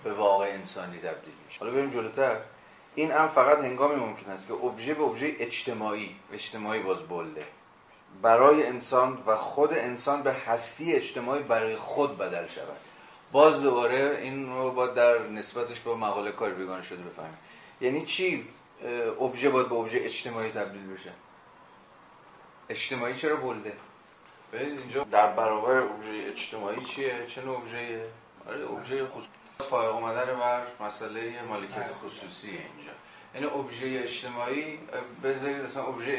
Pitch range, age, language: 105-130 Hz, 30-49, Persian